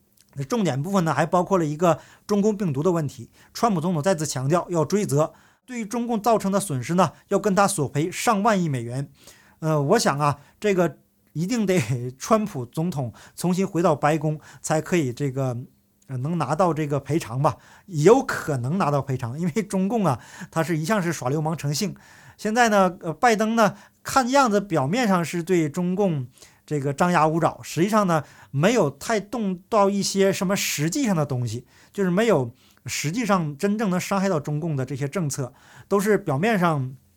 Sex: male